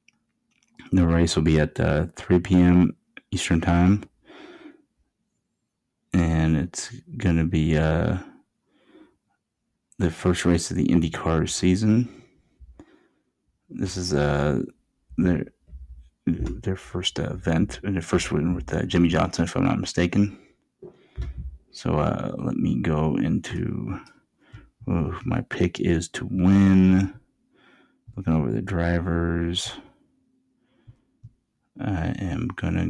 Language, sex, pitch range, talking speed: English, male, 85-95 Hz, 110 wpm